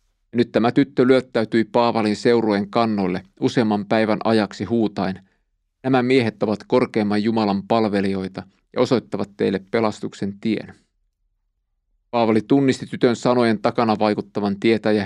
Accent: native